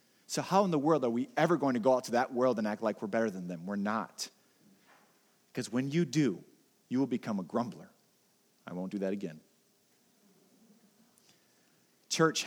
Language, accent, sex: English, American, male